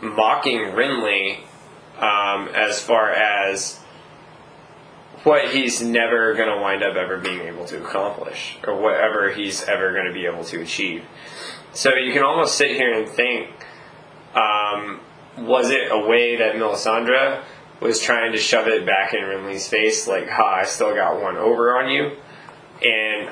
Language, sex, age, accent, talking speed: English, male, 20-39, American, 160 wpm